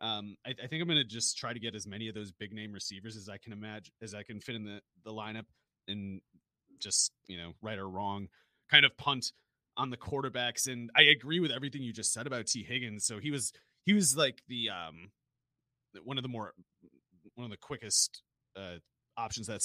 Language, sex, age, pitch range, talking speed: English, male, 30-49, 100-125 Hz, 220 wpm